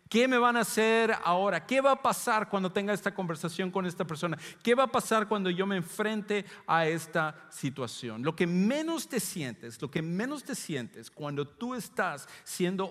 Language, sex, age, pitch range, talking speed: English, male, 50-69, 135-185 Hz, 195 wpm